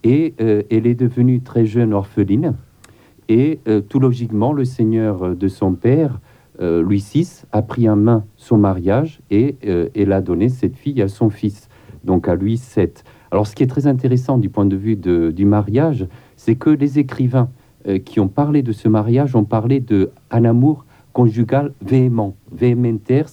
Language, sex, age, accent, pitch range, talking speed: French, male, 50-69, French, 105-130 Hz, 185 wpm